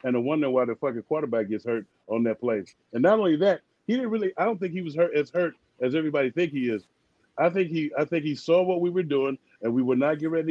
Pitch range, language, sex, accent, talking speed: 145-185 Hz, English, male, American, 270 wpm